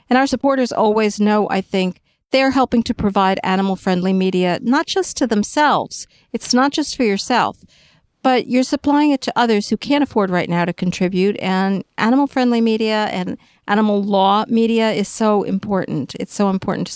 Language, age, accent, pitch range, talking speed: English, 50-69, American, 185-235 Hz, 175 wpm